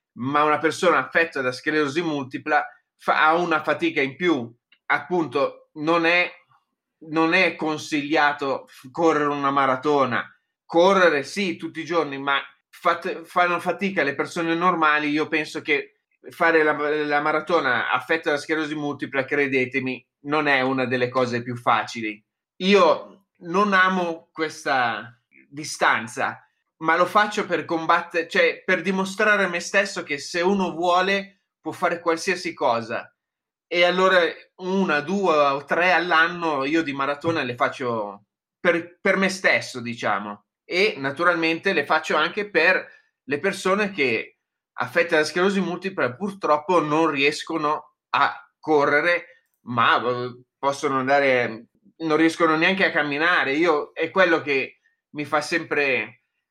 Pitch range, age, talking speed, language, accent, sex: 145-180 Hz, 30-49, 135 wpm, Italian, native, male